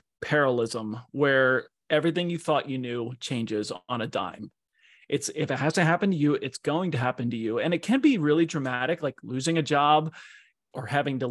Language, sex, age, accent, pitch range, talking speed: English, male, 30-49, American, 130-180 Hz, 200 wpm